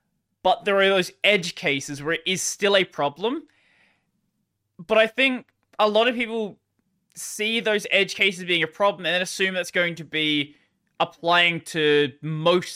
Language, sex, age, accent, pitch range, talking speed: English, male, 20-39, Australian, 150-200 Hz, 170 wpm